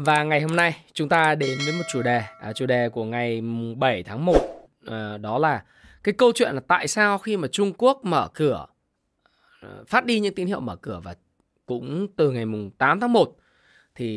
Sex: male